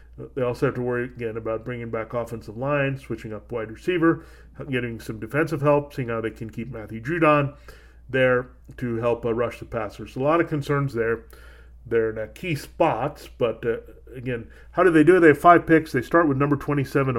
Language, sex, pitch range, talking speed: English, male, 115-145 Hz, 210 wpm